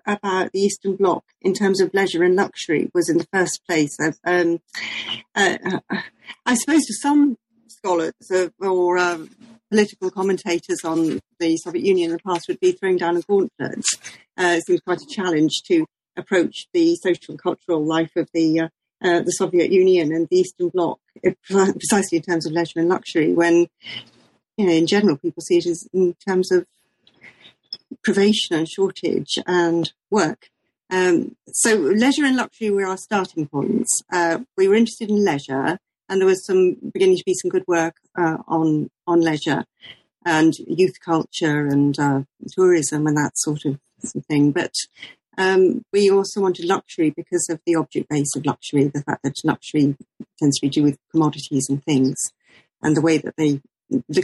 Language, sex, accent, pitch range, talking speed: English, female, British, 160-200 Hz, 180 wpm